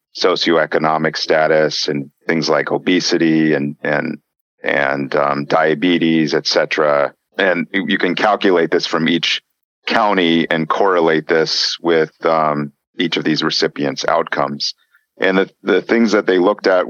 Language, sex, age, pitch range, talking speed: English, male, 40-59, 75-85 Hz, 140 wpm